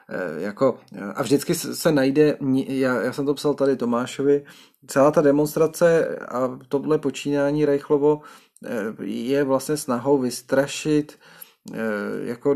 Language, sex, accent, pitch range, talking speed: Czech, male, native, 115-155 Hz, 115 wpm